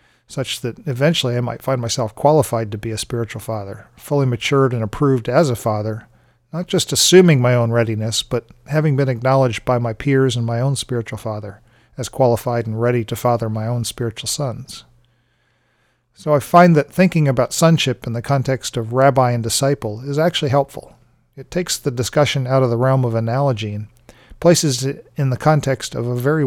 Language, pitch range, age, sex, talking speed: English, 115-140 Hz, 40-59, male, 190 wpm